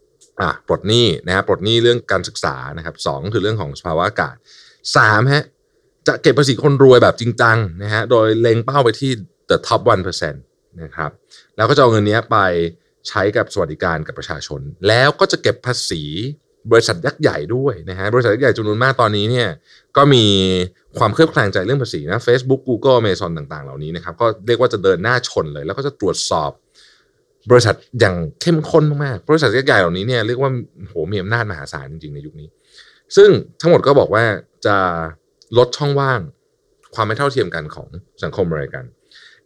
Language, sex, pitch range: Thai, male, 105-155 Hz